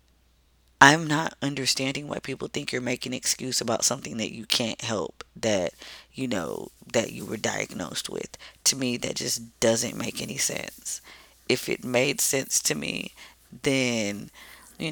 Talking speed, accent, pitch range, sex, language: 160 wpm, American, 105-135 Hz, female, English